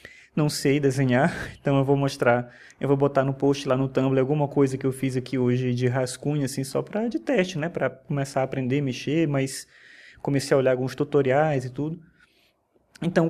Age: 20-39